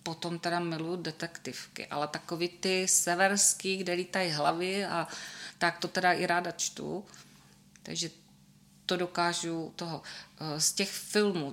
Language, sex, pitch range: Czech, female, 165-185 Hz